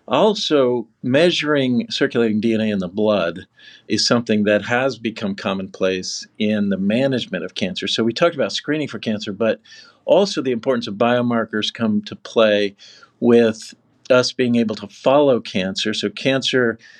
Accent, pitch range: American, 105-125 Hz